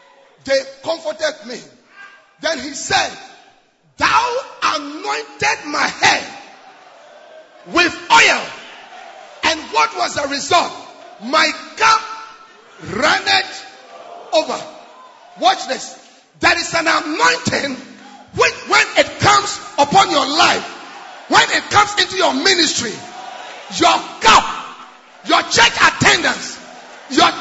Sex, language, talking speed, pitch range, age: male, English, 100 wpm, 310-390 Hz, 40-59